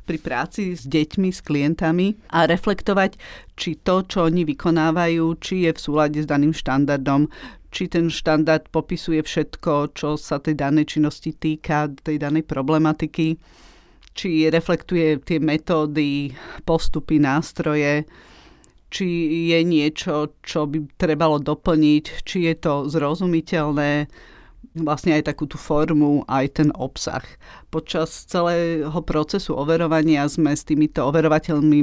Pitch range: 150-165 Hz